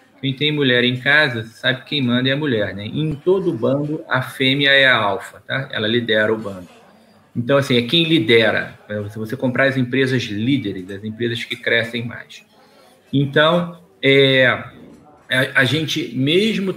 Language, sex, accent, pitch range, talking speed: Portuguese, male, Brazilian, 125-170 Hz, 165 wpm